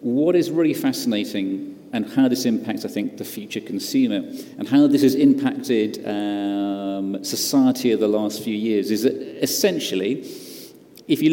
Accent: British